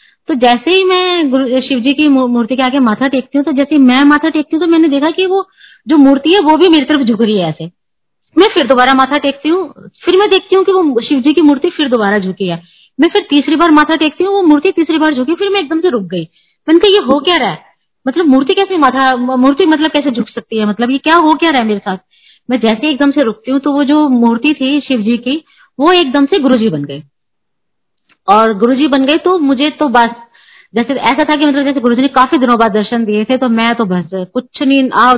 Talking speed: 250 wpm